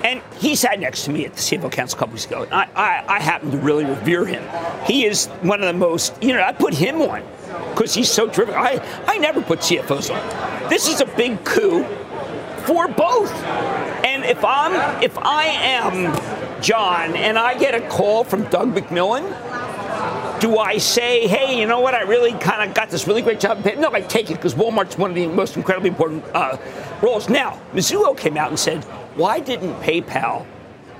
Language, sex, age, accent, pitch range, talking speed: English, male, 50-69, American, 170-240 Hz, 205 wpm